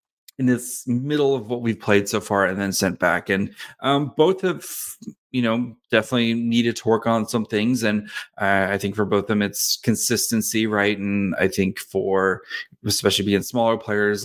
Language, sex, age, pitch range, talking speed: English, male, 30-49, 105-125 Hz, 190 wpm